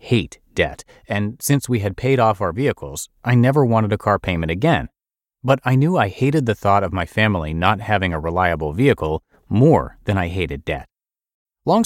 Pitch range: 90-120 Hz